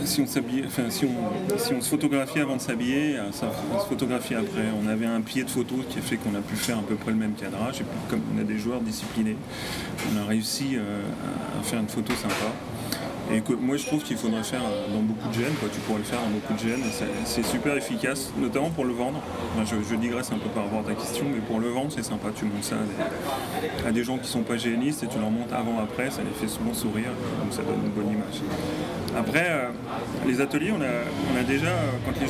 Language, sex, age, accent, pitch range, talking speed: French, male, 30-49, French, 110-135 Hz, 255 wpm